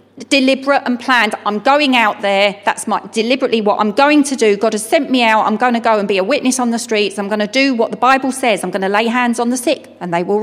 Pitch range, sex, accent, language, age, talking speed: 215-280 Hz, female, British, English, 40-59, 280 wpm